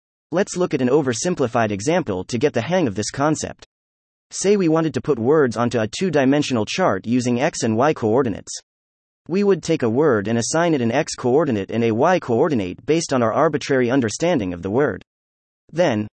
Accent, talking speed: American, 185 wpm